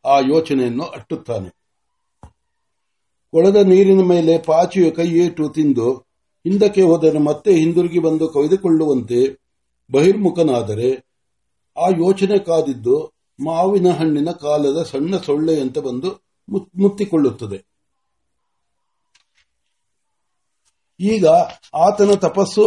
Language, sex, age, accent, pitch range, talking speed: Marathi, male, 60-79, native, 140-185 Hz, 40 wpm